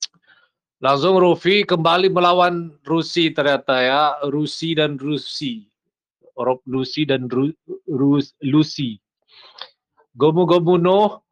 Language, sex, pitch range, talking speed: Indonesian, male, 140-160 Hz, 90 wpm